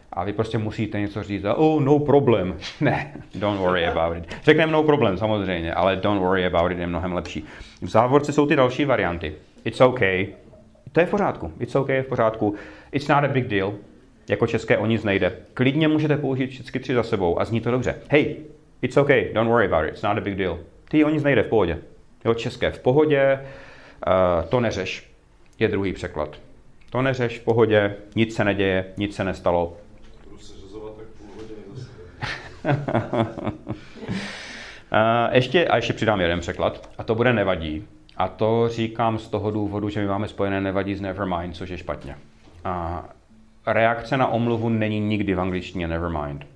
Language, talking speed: Czech, 175 wpm